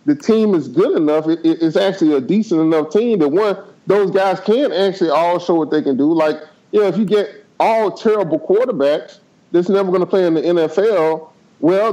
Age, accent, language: 30-49, American, English